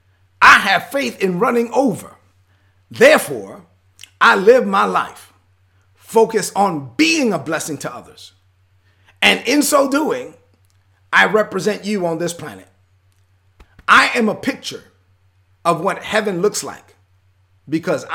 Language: English